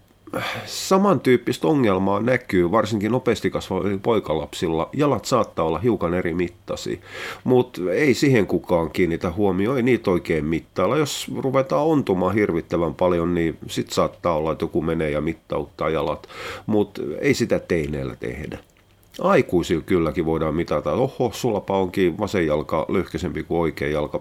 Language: Finnish